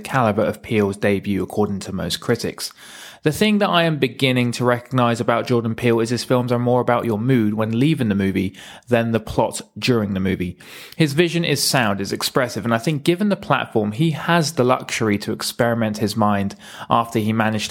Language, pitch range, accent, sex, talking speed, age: English, 105-125 Hz, British, male, 205 wpm, 20-39